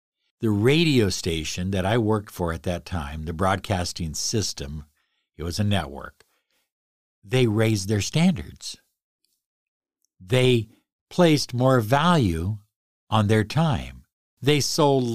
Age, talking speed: 60-79, 120 wpm